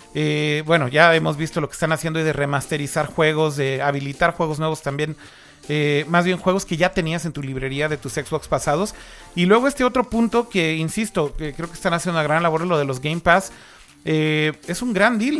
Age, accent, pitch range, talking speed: 30-49, Mexican, 155-205 Hz, 215 wpm